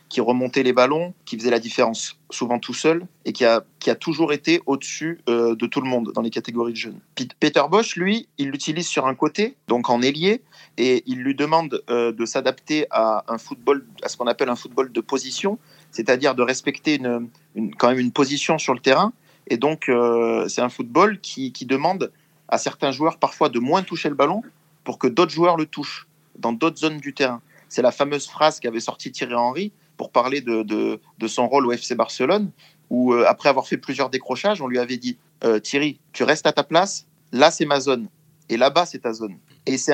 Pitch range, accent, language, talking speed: 120-155 Hz, French, French, 220 wpm